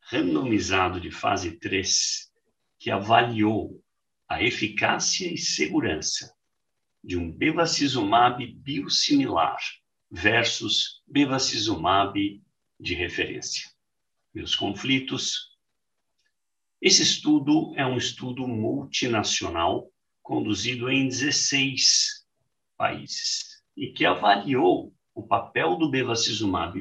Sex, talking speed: male, 85 wpm